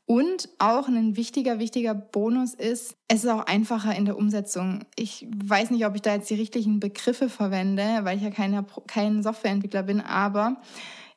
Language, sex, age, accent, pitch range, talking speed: German, female, 20-39, German, 200-230 Hz, 175 wpm